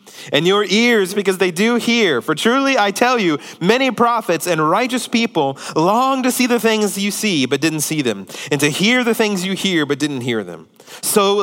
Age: 30-49